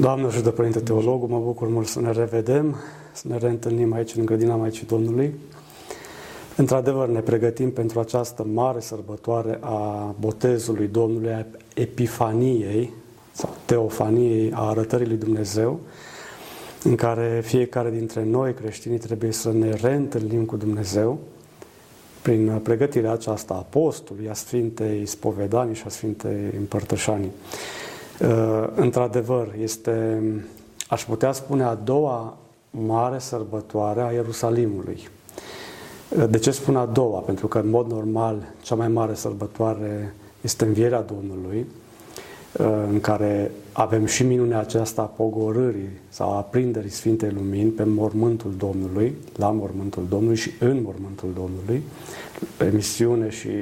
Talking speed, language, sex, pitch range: 130 wpm, Romanian, male, 110-120 Hz